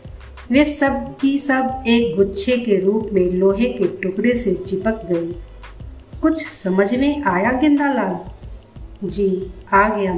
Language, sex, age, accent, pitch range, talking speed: Hindi, female, 50-69, native, 180-225 Hz, 135 wpm